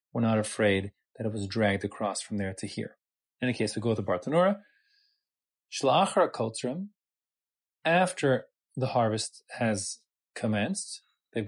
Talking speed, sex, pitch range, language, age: 135 wpm, male, 110-140 Hz, English, 20-39